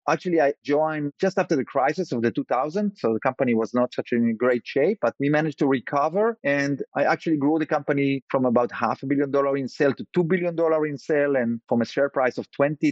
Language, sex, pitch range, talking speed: English, male, 130-160 Hz, 235 wpm